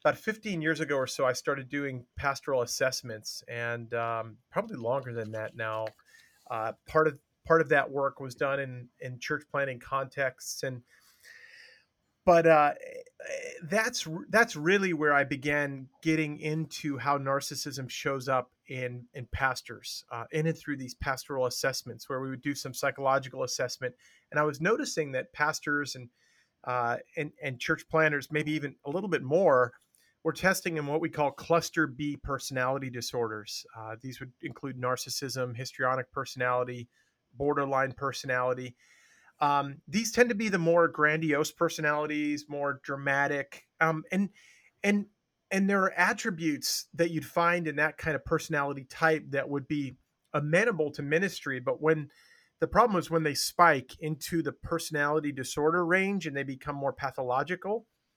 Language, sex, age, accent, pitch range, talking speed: English, male, 30-49, American, 130-160 Hz, 155 wpm